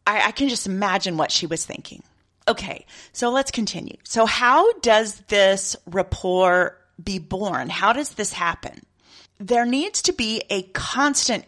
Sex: female